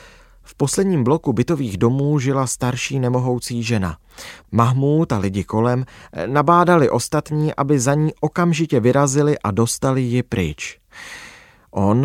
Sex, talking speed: male, 125 wpm